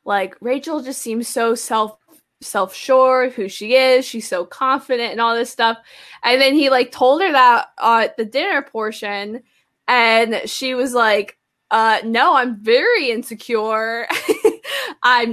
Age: 10-29